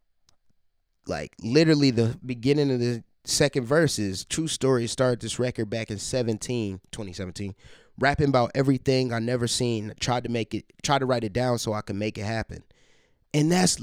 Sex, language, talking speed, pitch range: male, English, 185 wpm, 105-130 Hz